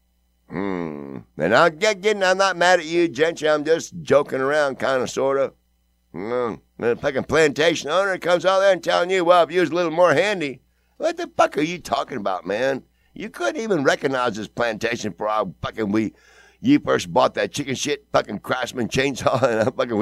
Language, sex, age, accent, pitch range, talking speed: English, male, 60-79, American, 115-180 Hz, 200 wpm